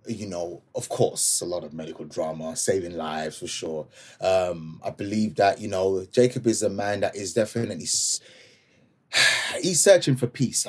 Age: 30-49